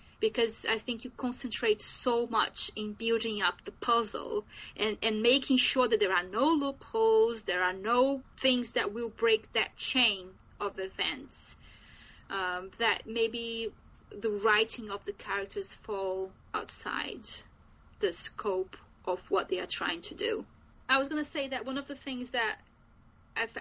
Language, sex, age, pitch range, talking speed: English, female, 20-39, 220-270 Hz, 160 wpm